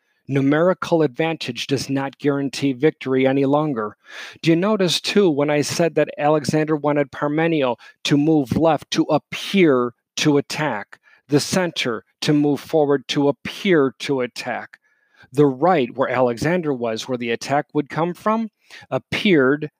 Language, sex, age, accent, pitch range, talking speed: English, male, 40-59, American, 135-155 Hz, 140 wpm